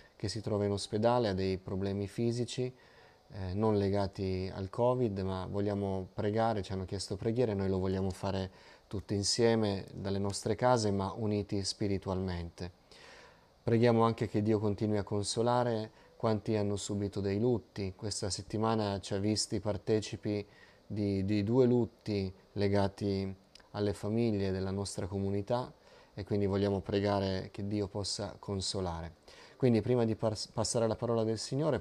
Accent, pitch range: native, 100-115 Hz